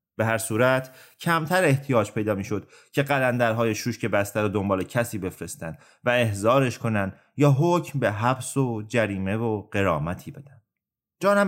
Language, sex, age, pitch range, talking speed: Persian, male, 30-49, 115-150 Hz, 150 wpm